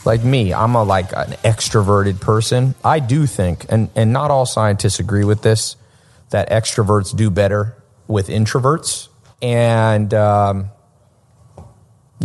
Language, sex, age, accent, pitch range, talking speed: English, male, 30-49, American, 105-130 Hz, 125 wpm